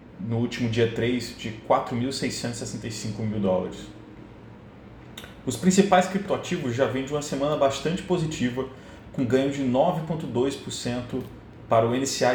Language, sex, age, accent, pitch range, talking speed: Portuguese, male, 30-49, Brazilian, 115-155 Hz, 120 wpm